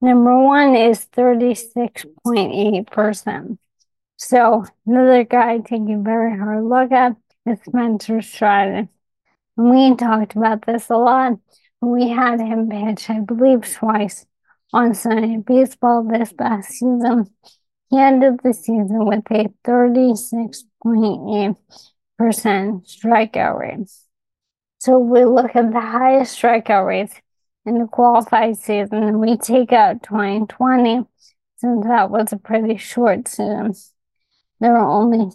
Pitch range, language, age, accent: 215-245 Hz, English, 20-39, American